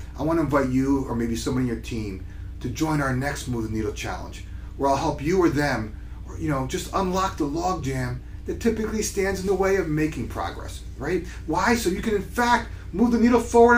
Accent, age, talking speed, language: American, 40-59, 220 wpm, English